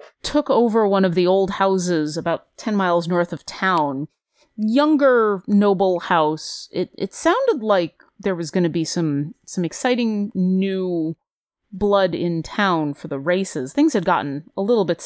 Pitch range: 160-210 Hz